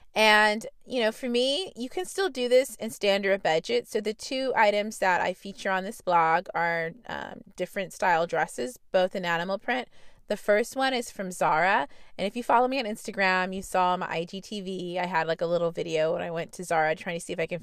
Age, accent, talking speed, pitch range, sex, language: 30-49, American, 225 wpm, 180-240 Hz, female, English